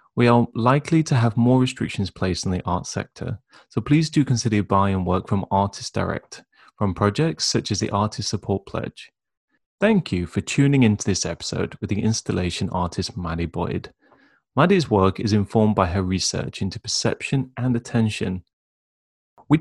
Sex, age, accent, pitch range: male, 30-49, British, 95-125 Hz